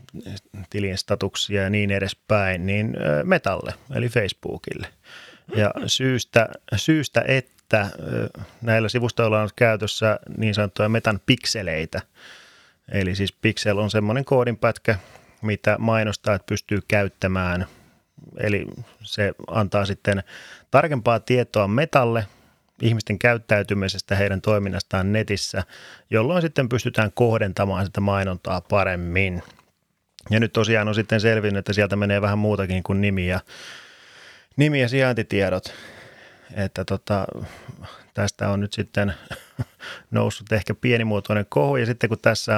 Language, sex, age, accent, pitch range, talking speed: Finnish, male, 30-49, native, 100-115 Hz, 115 wpm